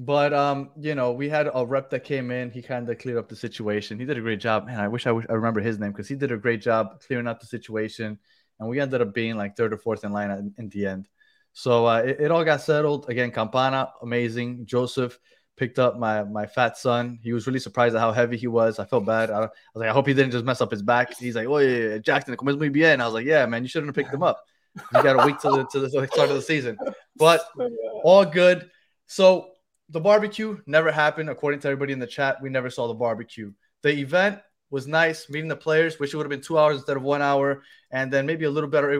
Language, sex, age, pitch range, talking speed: English, male, 20-39, 120-155 Hz, 265 wpm